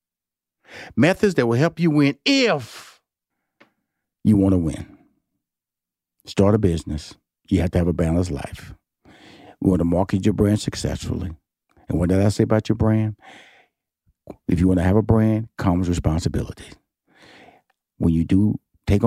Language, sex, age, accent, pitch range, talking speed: English, male, 50-69, American, 95-120 Hz, 155 wpm